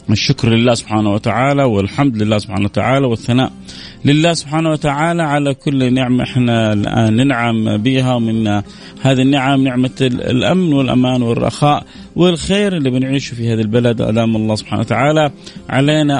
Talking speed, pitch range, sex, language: 135 wpm, 110-140 Hz, male, Arabic